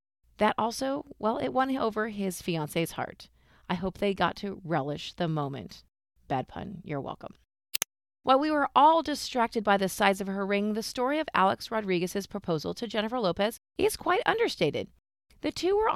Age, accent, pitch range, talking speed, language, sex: 30-49, American, 185-255 Hz, 175 wpm, English, female